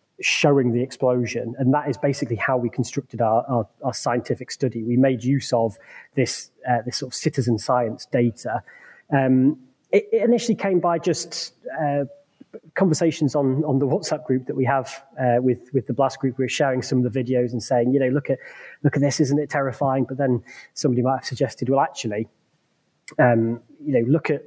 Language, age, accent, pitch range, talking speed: English, 20-39, British, 120-145 Hz, 200 wpm